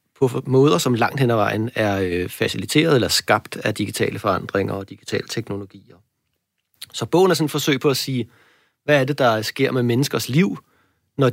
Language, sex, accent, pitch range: Danish, male, native, 110-130 Hz